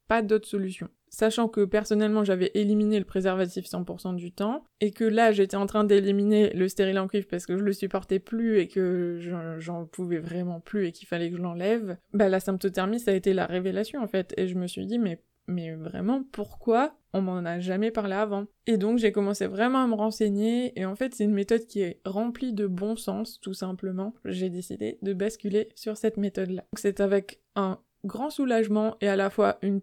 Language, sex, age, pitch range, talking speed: French, female, 20-39, 185-215 Hz, 215 wpm